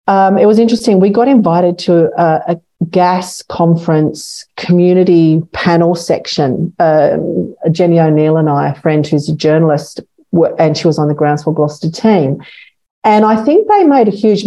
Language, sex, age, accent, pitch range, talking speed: English, female, 40-59, Australian, 160-195 Hz, 170 wpm